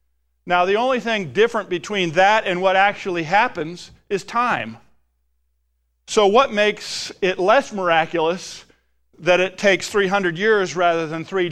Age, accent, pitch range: 50-69, American, 140-190 Hz